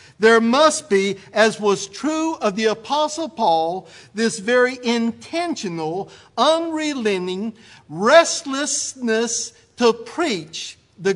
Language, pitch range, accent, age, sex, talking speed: English, 175-250 Hz, American, 50-69, male, 95 wpm